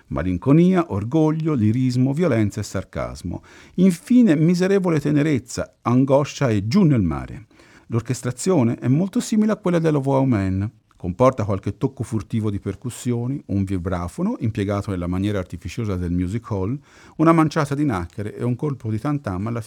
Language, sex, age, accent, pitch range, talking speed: Italian, male, 50-69, native, 105-150 Hz, 140 wpm